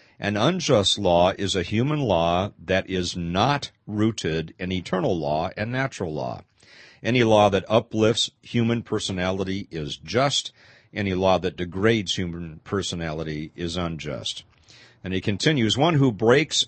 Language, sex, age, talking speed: English, male, 50-69, 140 wpm